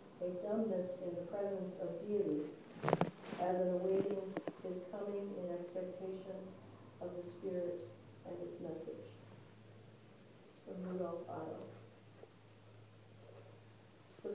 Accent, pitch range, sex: American, 175-210 Hz, female